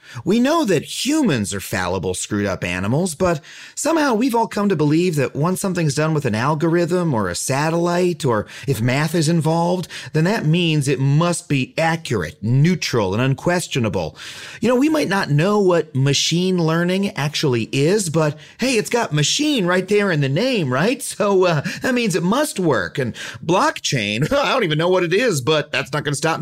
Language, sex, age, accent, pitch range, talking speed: English, male, 40-59, American, 135-190 Hz, 190 wpm